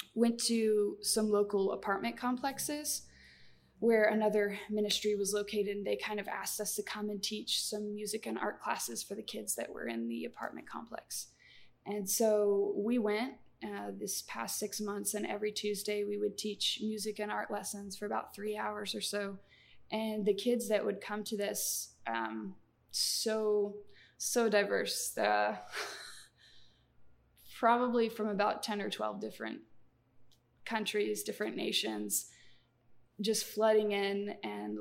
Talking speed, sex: 150 wpm, female